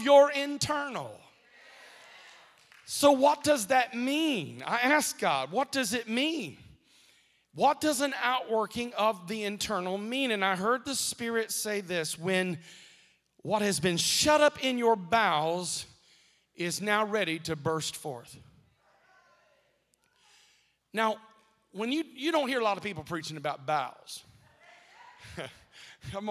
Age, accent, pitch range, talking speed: 40-59, American, 160-230 Hz, 130 wpm